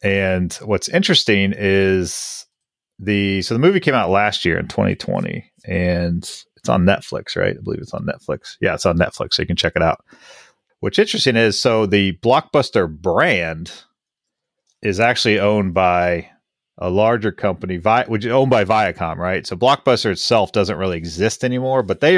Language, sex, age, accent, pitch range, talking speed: English, male, 30-49, American, 90-115 Hz, 175 wpm